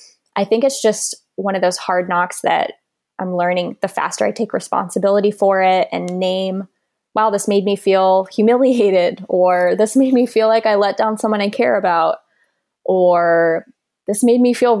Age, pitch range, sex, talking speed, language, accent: 20-39, 185-220 Hz, female, 180 wpm, English, American